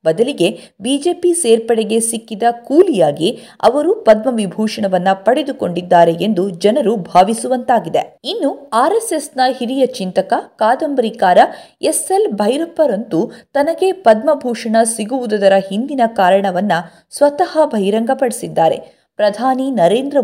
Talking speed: 85 wpm